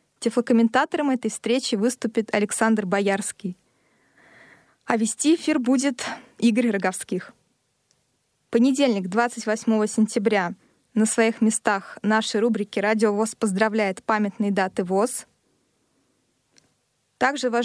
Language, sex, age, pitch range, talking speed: Russian, female, 20-39, 210-245 Hz, 95 wpm